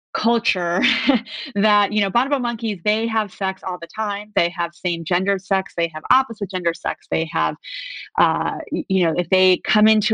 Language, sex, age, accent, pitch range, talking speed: English, female, 30-49, American, 175-215 Hz, 185 wpm